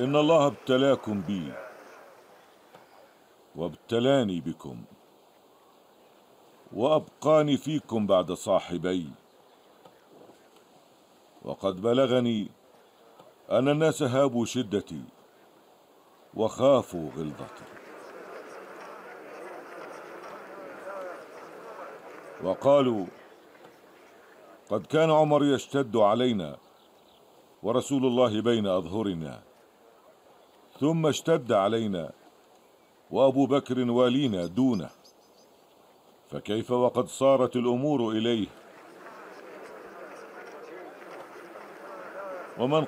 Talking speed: 55 wpm